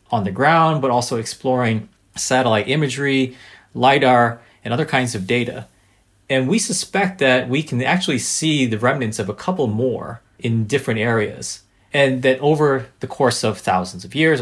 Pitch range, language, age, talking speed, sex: 105-140 Hz, English, 30-49, 165 wpm, male